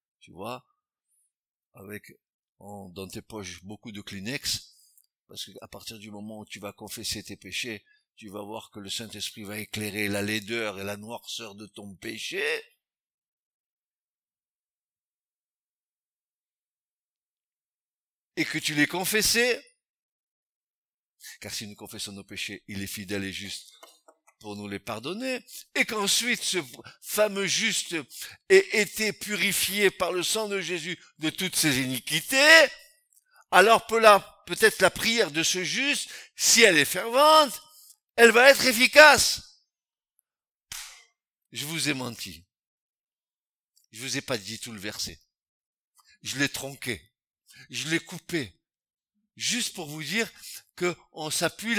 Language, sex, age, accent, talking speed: French, male, 60-79, French, 130 wpm